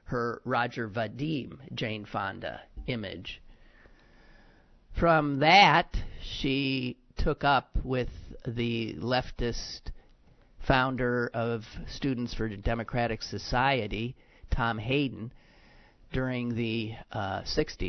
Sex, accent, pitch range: male, American, 110-140 Hz